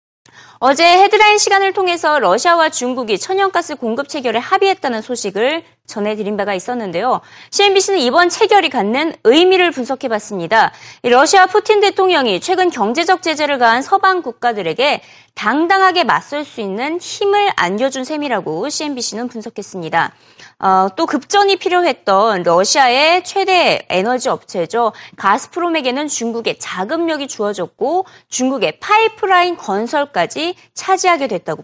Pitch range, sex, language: 215-360 Hz, female, Korean